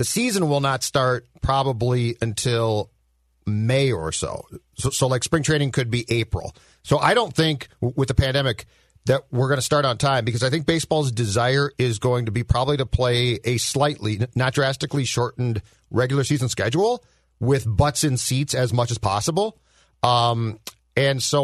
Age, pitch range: 40-59, 115-140 Hz